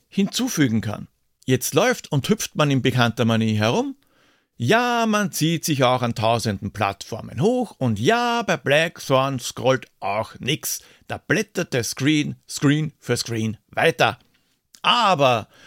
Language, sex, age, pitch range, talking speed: German, male, 60-79, 125-185 Hz, 140 wpm